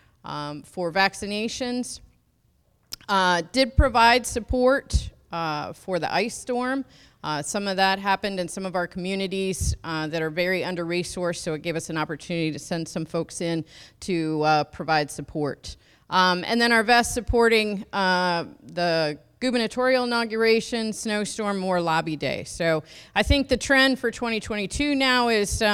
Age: 30-49